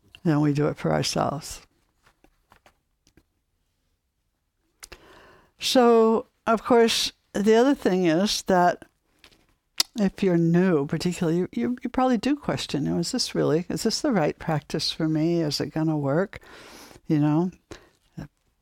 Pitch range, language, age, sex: 140-180 Hz, English, 60-79, female